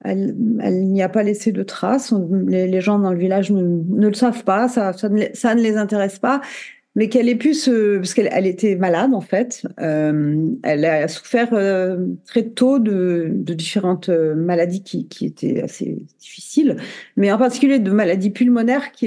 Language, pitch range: French, 180-235 Hz